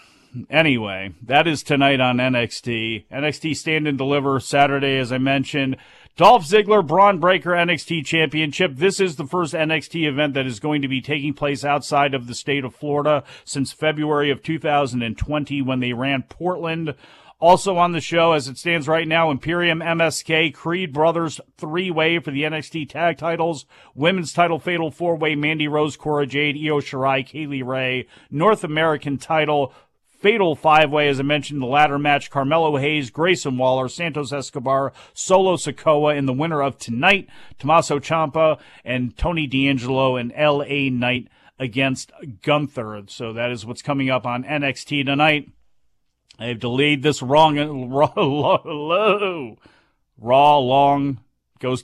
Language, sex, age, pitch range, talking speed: English, male, 40-59, 130-160 Hz, 150 wpm